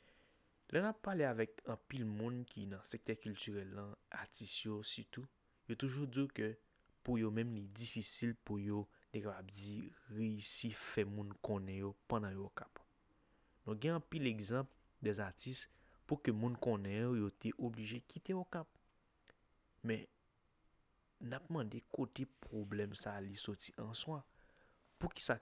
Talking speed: 165 wpm